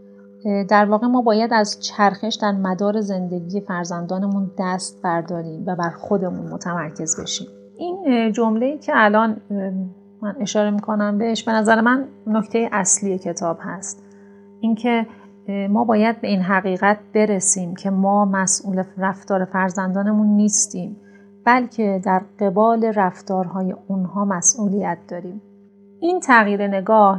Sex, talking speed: female, 120 wpm